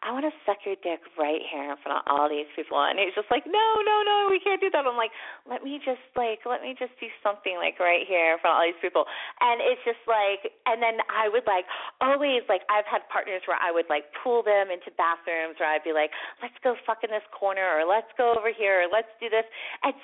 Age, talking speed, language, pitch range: 30-49, 260 wpm, English, 165-240 Hz